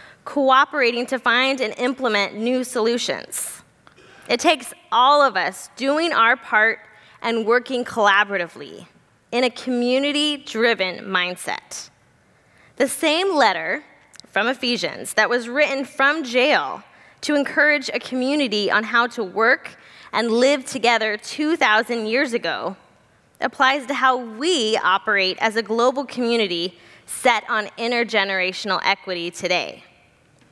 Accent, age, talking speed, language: American, 20-39, 120 wpm, English